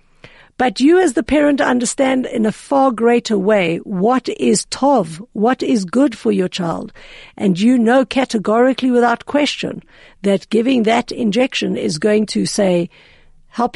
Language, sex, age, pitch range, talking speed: English, female, 60-79, 205-265 Hz, 155 wpm